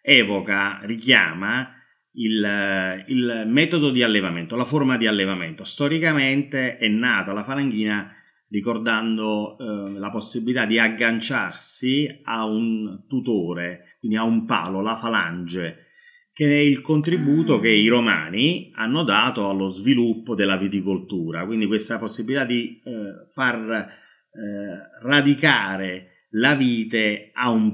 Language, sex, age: Italian, male, 30-49